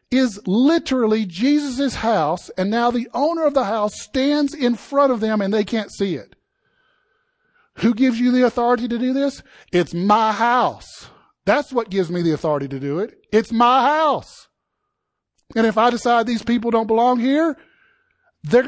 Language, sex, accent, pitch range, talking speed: English, male, American, 160-245 Hz, 175 wpm